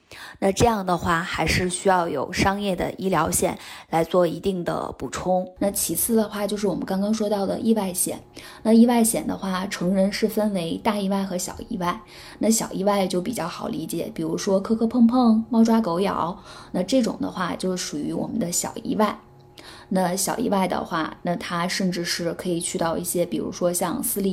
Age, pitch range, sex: 20-39, 175-205 Hz, female